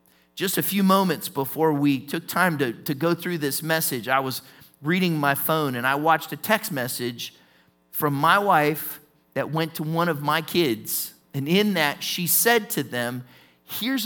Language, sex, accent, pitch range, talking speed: English, male, American, 135-185 Hz, 185 wpm